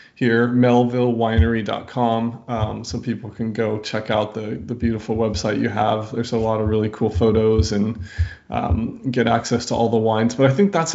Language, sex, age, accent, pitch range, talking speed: English, male, 20-39, American, 110-120 Hz, 185 wpm